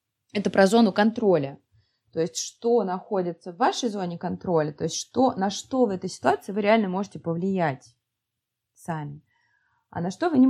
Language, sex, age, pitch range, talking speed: Russian, female, 20-39, 150-185 Hz, 165 wpm